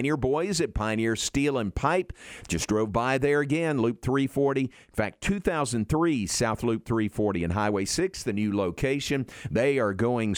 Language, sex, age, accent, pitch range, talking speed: English, male, 50-69, American, 100-130 Hz, 170 wpm